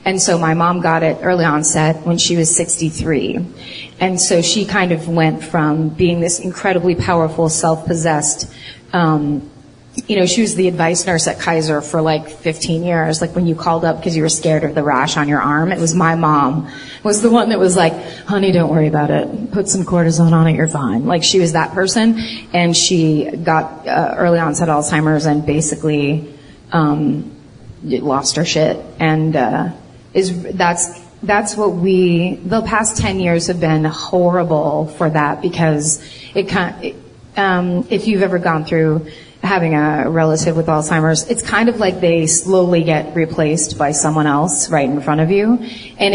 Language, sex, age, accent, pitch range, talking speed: English, female, 30-49, American, 155-185 Hz, 180 wpm